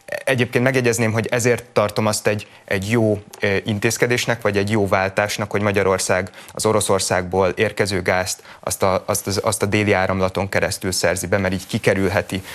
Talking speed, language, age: 165 wpm, Hungarian, 30-49